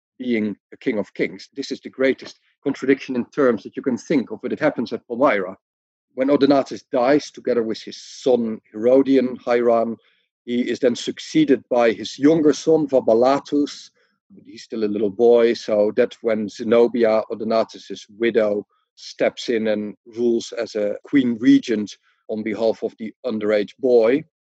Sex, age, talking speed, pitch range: male, 50-69, 160 wpm, 110-135 Hz